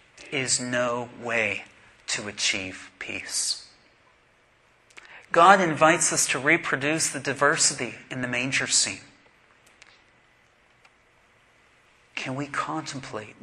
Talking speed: 95 wpm